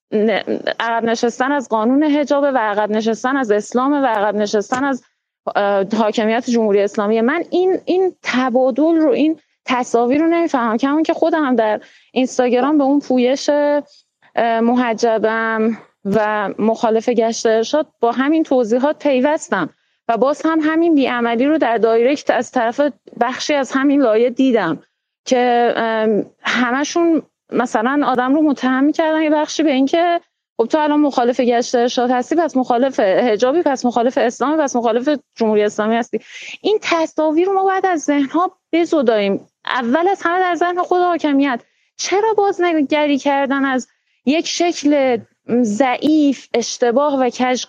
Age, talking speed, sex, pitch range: 30-49, 140 wpm, female, 240-315 Hz